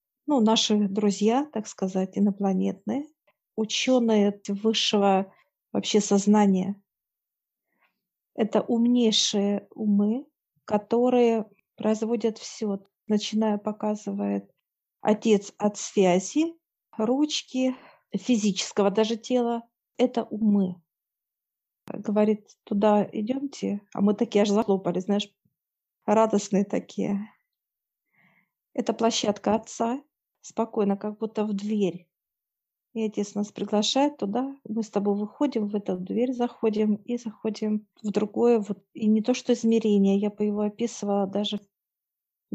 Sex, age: female, 40-59